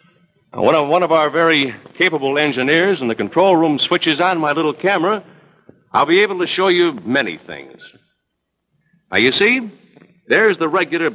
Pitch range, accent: 120-175 Hz, American